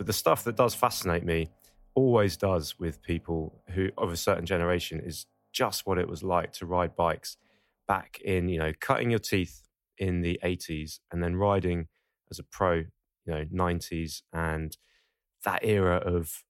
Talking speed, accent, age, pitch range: 175 wpm, British, 20-39, 85-100 Hz